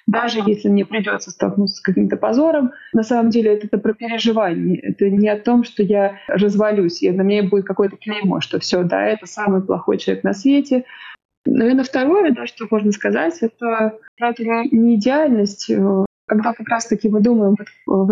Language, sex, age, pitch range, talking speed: Russian, female, 20-39, 200-230 Hz, 185 wpm